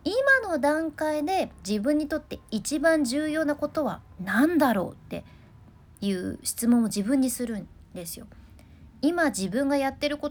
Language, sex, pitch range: Japanese, female, 205-315 Hz